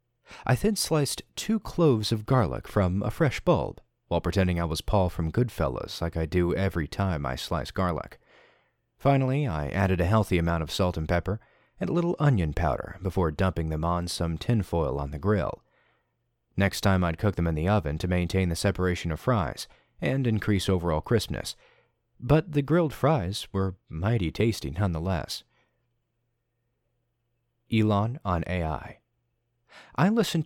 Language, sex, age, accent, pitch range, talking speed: English, male, 40-59, American, 85-120 Hz, 160 wpm